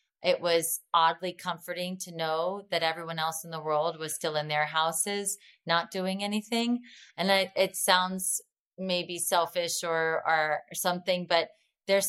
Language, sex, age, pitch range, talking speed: English, female, 30-49, 180-220 Hz, 155 wpm